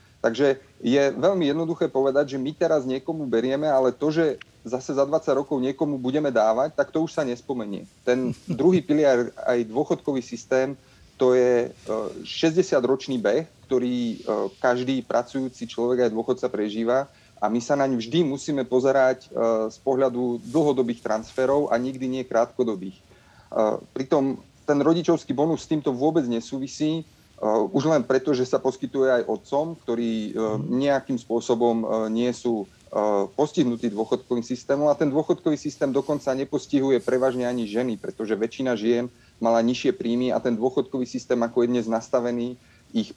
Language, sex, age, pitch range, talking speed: Slovak, male, 30-49, 120-140 Hz, 145 wpm